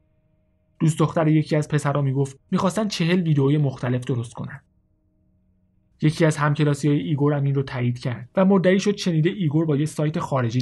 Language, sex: Persian, male